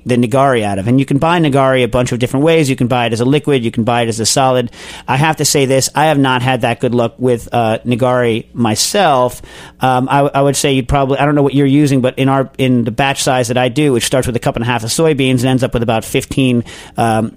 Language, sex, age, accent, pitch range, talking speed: English, male, 40-59, American, 120-140 Hz, 290 wpm